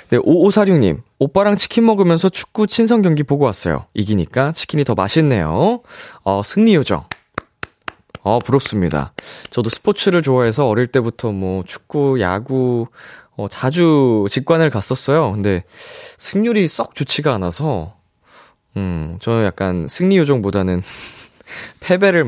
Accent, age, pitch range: native, 20-39, 100-160 Hz